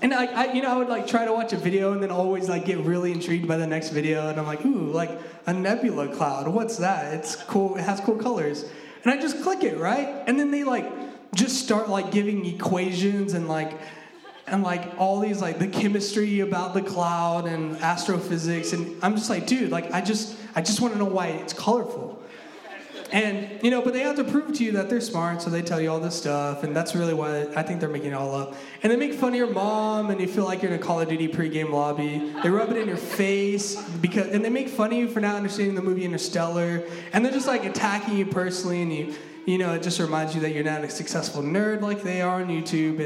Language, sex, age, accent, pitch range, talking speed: English, male, 20-39, American, 165-220 Hz, 250 wpm